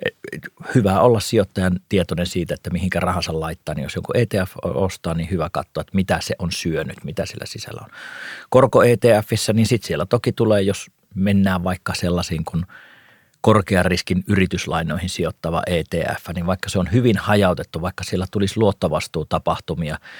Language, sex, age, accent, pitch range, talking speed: Finnish, male, 40-59, native, 85-100 Hz, 155 wpm